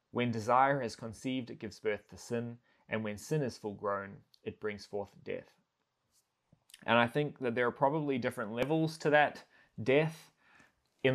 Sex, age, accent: male, 20-39, Australian